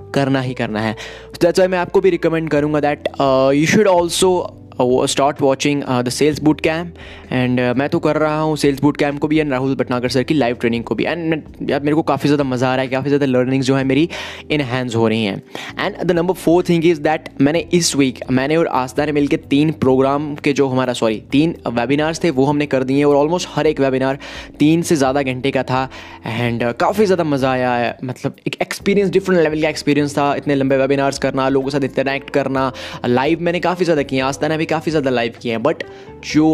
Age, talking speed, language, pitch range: 20-39, 215 wpm, Hindi, 130-160 Hz